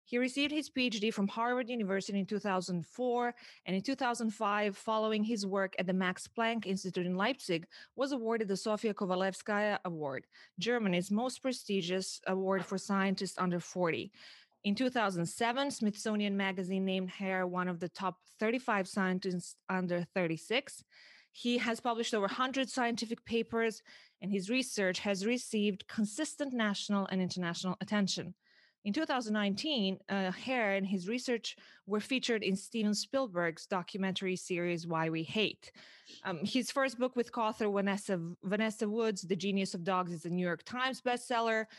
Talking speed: 150 wpm